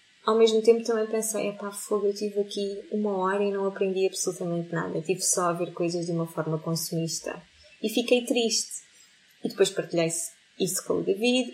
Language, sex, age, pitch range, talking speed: Portuguese, female, 20-39, 170-210 Hz, 185 wpm